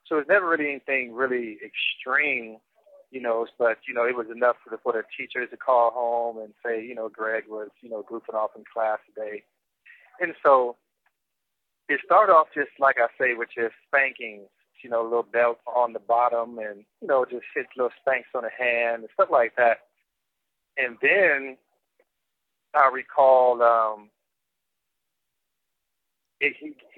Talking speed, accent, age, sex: 170 wpm, American, 30-49, male